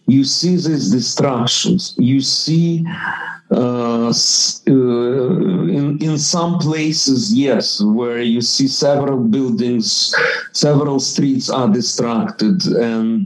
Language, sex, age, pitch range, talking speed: English, male, 50-69, 130-185 Hz, 105 wpm